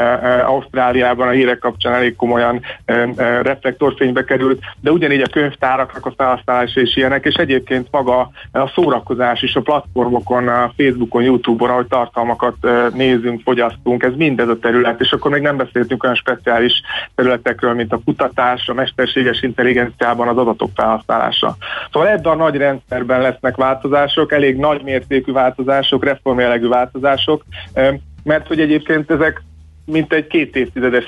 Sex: male